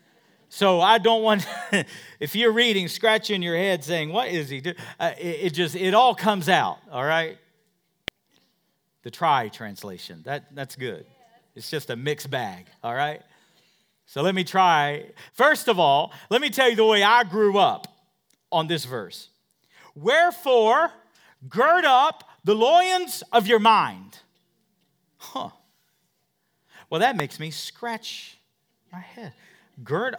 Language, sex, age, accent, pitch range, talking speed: English, male, 50-69, American, 145-215 Hz, 145 wpm